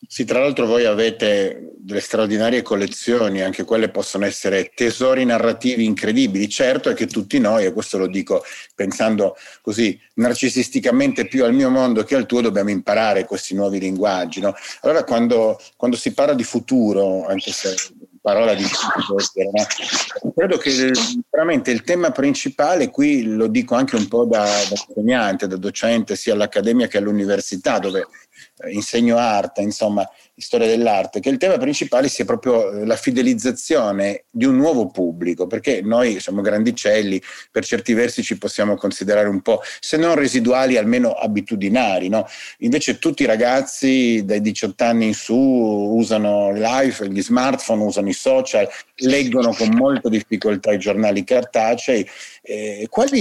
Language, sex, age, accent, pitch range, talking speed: Italian, male, 40-59, native, 105-135 Hz, 150 wpm